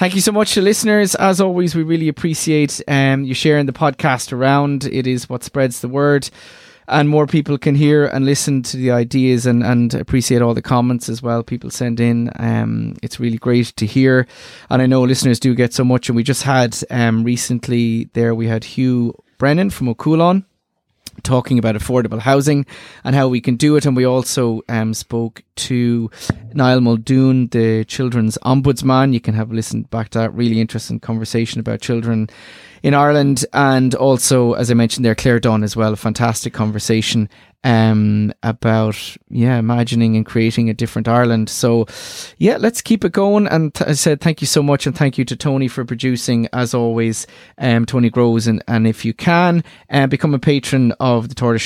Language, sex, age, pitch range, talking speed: English, male, 30-49, 115-140 Hz, 195 wpm